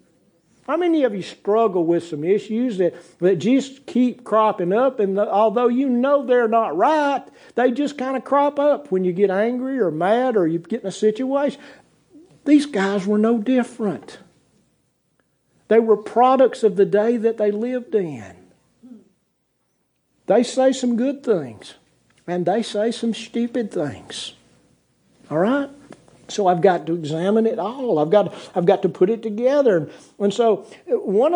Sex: male